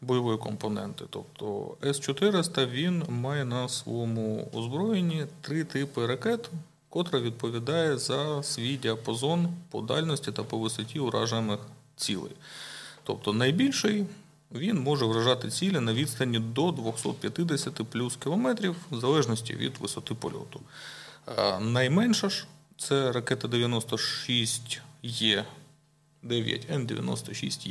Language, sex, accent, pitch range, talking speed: Ukrainian, male, native, 115-150 Hz, 110 wpm